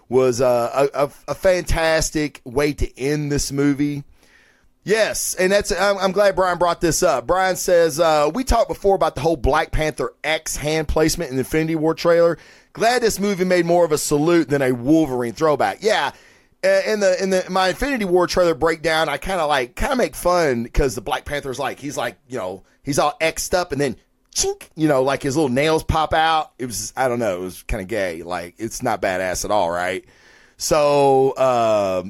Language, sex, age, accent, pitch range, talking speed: English, male, 30-49, American, 130-180 Hz, 205 wpm